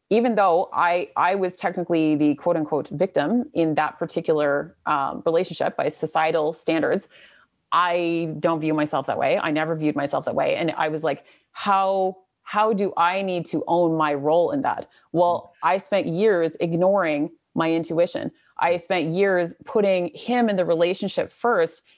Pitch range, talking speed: 160-195 Hz, 165 wpm